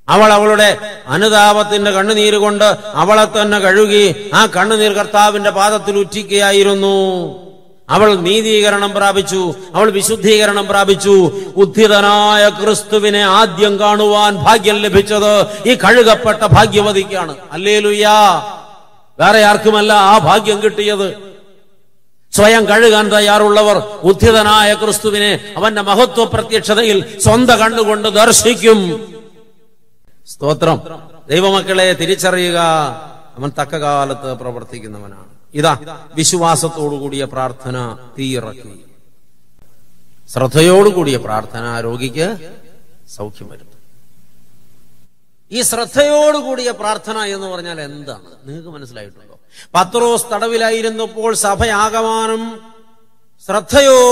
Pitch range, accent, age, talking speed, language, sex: 160-215 Hz, Indian, 50-69, 75 wpm, English, male